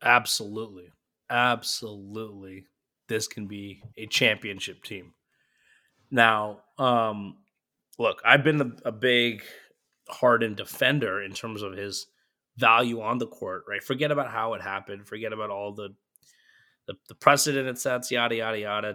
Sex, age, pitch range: male, 20-39, 105-135 Hz